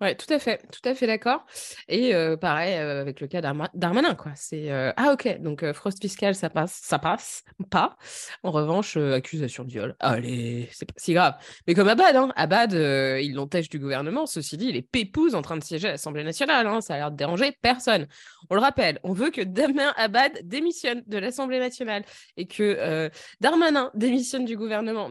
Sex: female